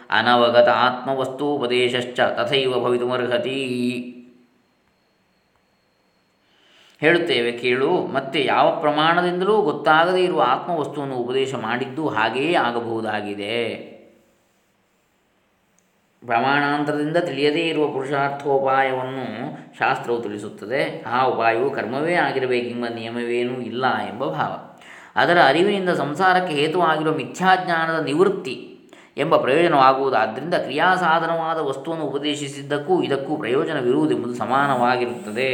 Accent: native